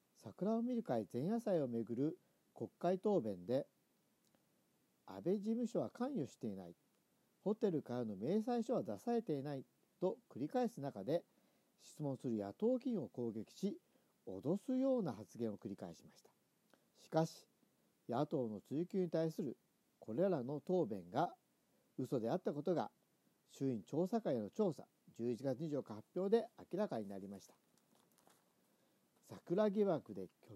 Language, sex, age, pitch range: Japanese, male, 50-69, 130-215 Hz